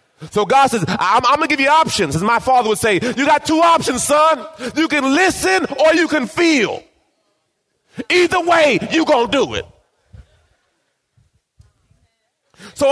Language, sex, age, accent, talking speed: English, male, 30-49, American, 160 wpm